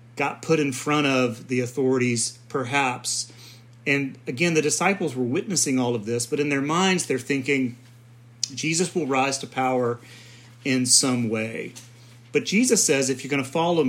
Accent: American